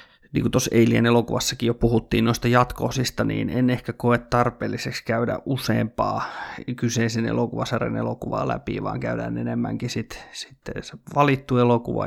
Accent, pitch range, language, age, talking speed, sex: native, 115-135 Hz, Finnish, 30-49, 130 wpm, male